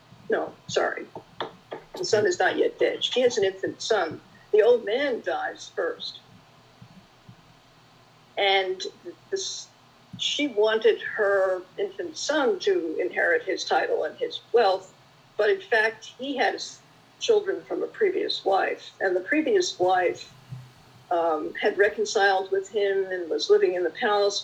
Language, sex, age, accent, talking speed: English, female, 50-69, American, 140 wpm